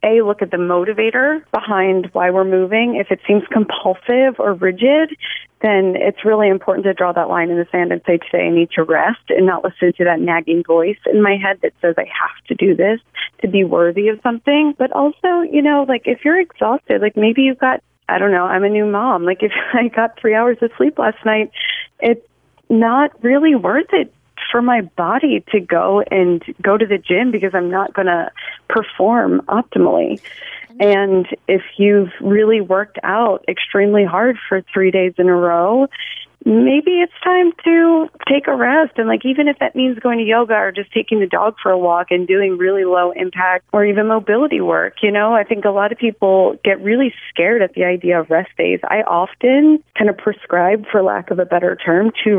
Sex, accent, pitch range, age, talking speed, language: female, American, 185-245 Hz, 30-49, 210 wpm, English